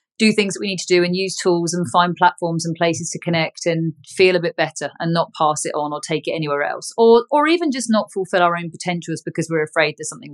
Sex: female